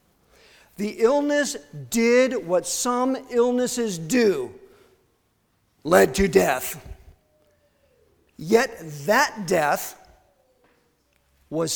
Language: English